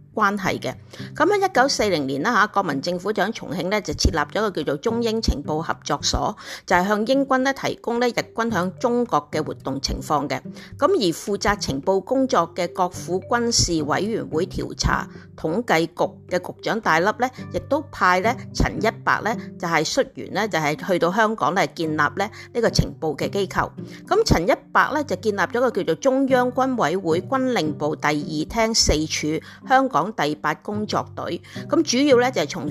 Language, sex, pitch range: Chinese, female, 165-245 Hz